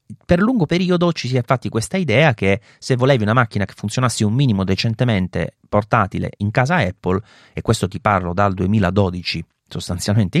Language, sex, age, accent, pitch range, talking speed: Italian, male, 30-49, native, 100-150 Hz, 175 wpm